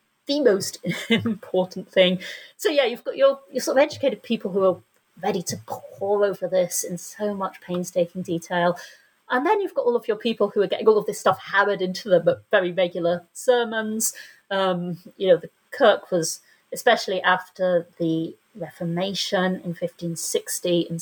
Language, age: English, 30-49